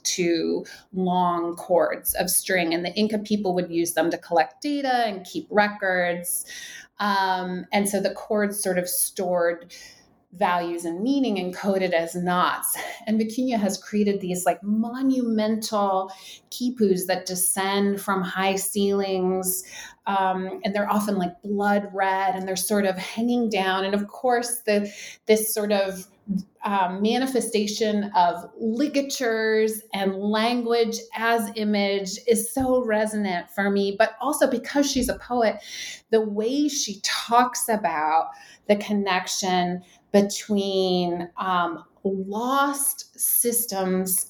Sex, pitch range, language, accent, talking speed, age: female, 185-220 Hz, English, American, 130 wpm, 30-49